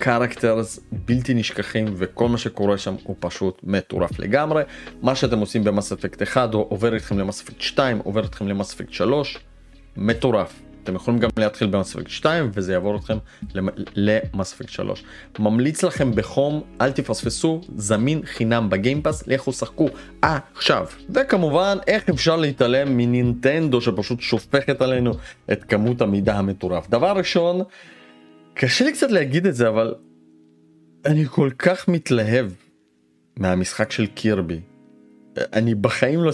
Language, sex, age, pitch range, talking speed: Hebrew, male, 30-49, 100-130 Hz, 130 wpm